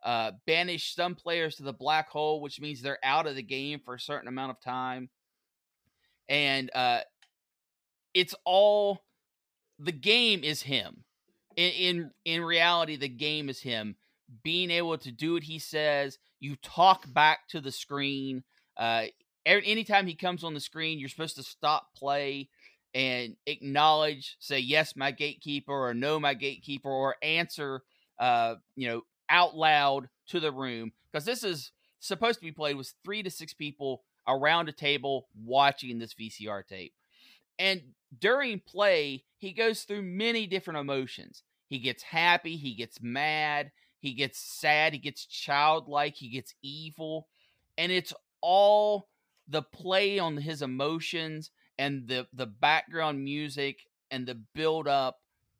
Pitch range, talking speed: 135-170 Hz, 150 wpm